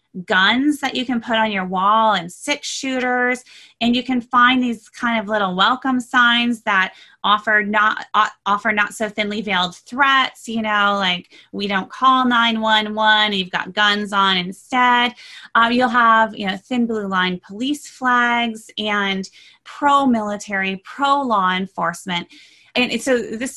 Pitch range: 195-250 Hz